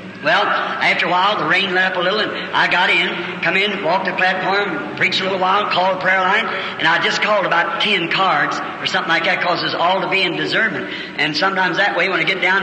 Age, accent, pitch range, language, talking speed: 60-79, American, 170-195 Hz, English, 250 wpm